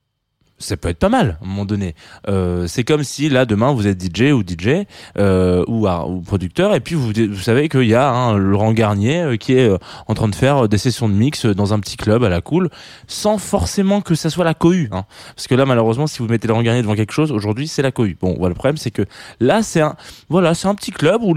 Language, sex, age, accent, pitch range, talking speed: French, male, 20-39, French, 95-135 Hz, 260 wpm